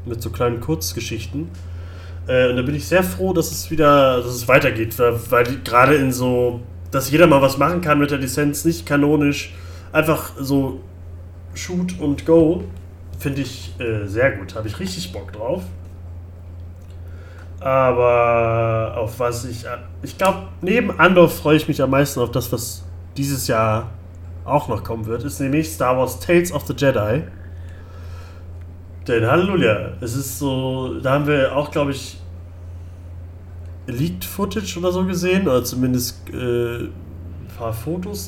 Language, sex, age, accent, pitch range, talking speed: German, male, 30-49, German, 90-145 Hz, 155 wpm